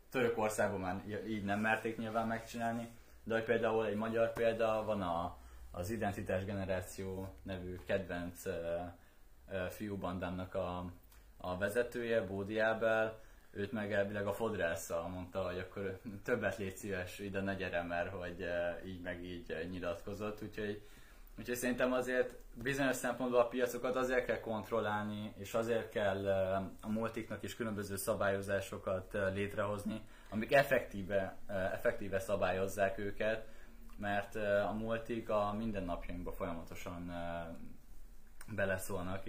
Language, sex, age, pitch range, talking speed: Hungarian, male, 20-39, 90-110 Hz, 115 wpm